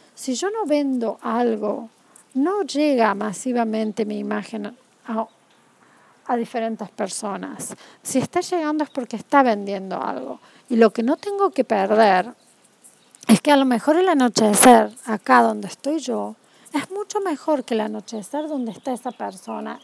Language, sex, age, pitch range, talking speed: Spanish, female, 40-59, 220-285 Hz, 150 wpm